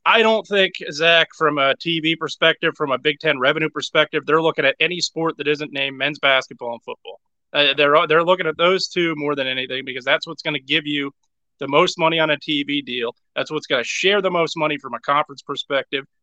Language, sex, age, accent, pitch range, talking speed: English, male, 30-49, American, 135-165 Hz, 230 wpm